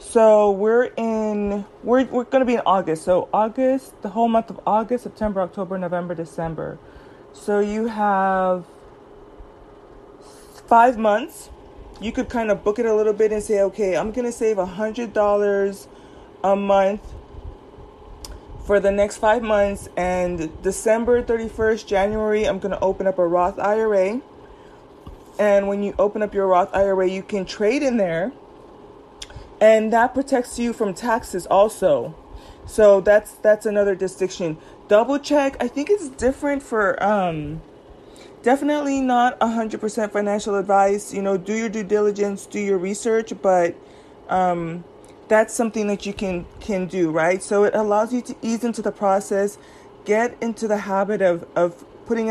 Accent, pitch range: American, 195-225 Hz